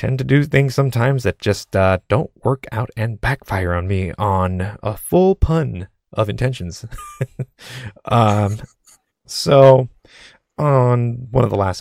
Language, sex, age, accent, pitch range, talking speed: English, male, 30-49, American, 95-125 Hz, 140 wpm